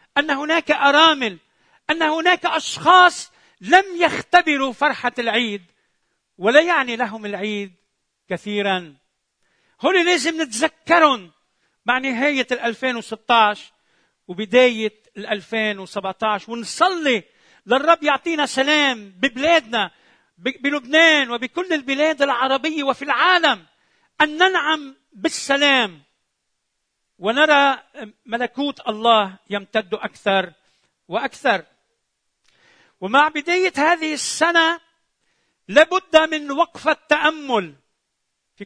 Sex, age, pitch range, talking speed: male, 50-69, 225-315 Hz, 80 wpm